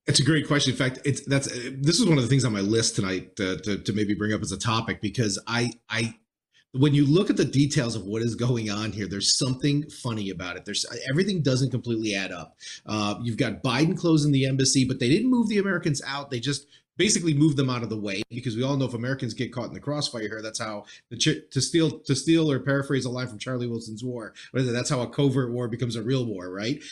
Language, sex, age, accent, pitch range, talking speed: English, male, 30-49, American, 115-145 Hz, 255 wpm